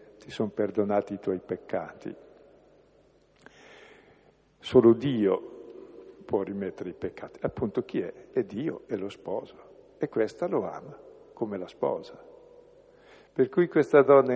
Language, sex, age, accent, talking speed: Italian, male, 50-69, native, 130 wpm